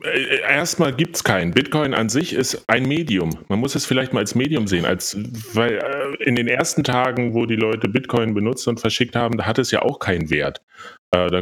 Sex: male